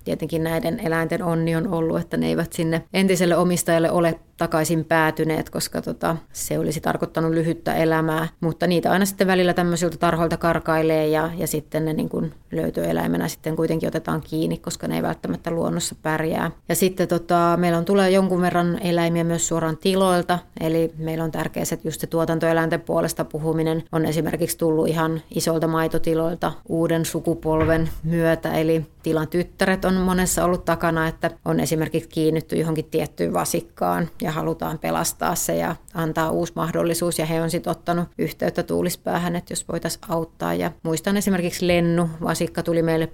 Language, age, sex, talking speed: Finnish, 30-49, female, 165 wpm